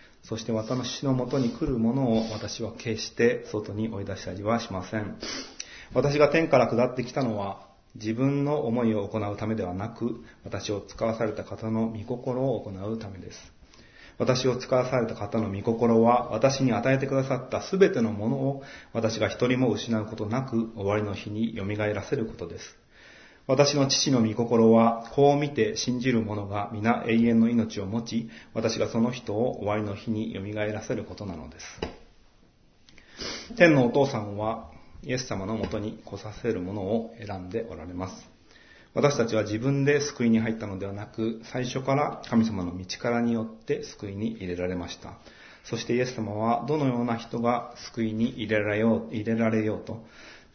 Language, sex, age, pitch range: Japanese, male, 30-49, 105-120 Hz